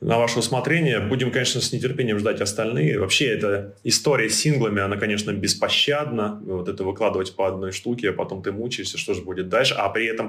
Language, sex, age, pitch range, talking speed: Russian, male, 20-39, 110-145 Hz, 200 wpm